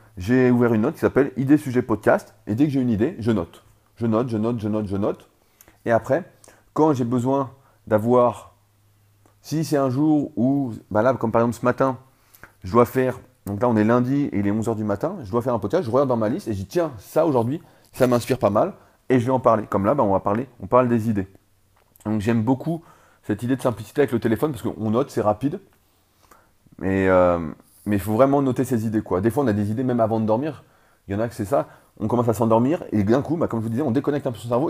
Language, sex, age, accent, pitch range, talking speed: French, male, 30-49, French, 105-130 Hz, 270 wpm